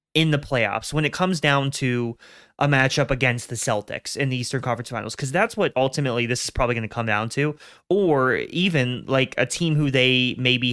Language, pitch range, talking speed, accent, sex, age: English, 115-135 Hz, 215 wpm, American, male, 20-39